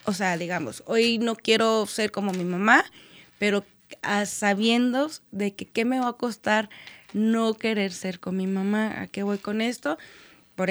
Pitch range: 195-225 Hz